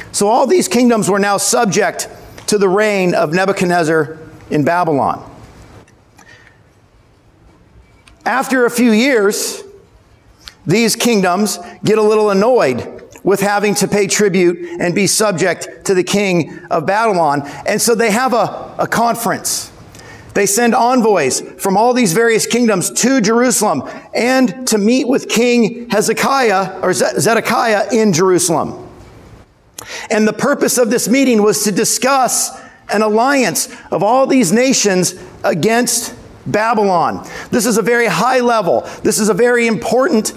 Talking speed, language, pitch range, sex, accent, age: 140 wpm, English, 200-245 Hz, male, American, 50-69